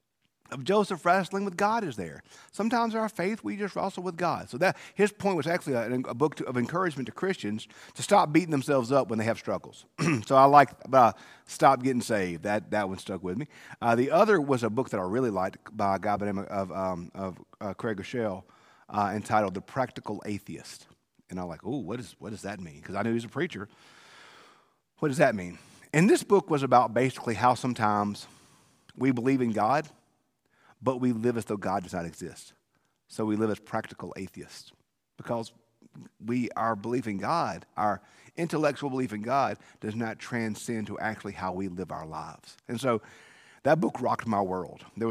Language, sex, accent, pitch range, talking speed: English, male, American, 100-135 Hz, 210 wpm